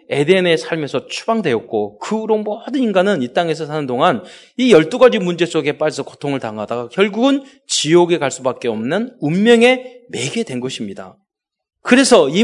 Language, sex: Korean, male